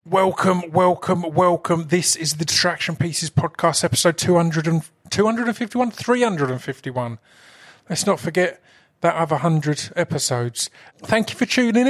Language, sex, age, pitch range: English, male, 30-49, 140-175 Hz